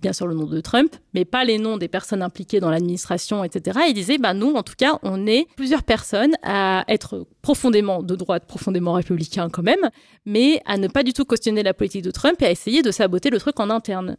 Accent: French